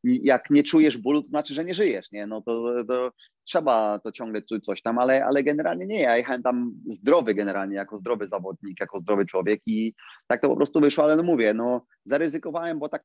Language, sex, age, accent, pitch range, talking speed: Polish, male, 30-49, native, 110-140 Hz, 210 wpm